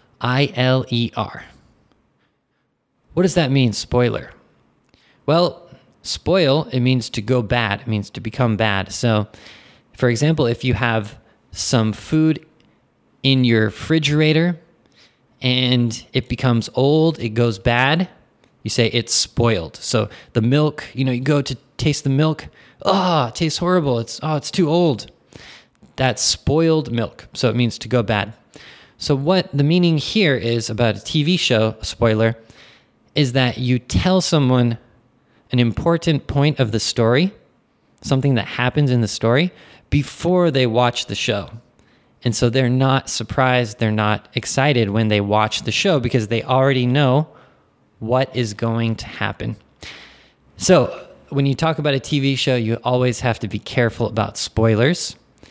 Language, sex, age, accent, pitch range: Japanese, male, 20-39, American, 115-140 Hz